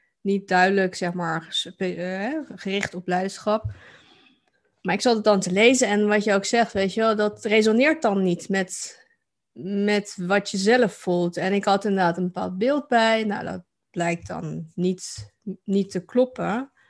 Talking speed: 170 wpm